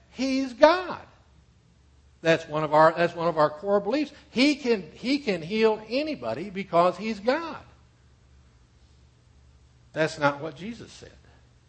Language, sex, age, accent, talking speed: English, male, 60-79, American, 115 wpm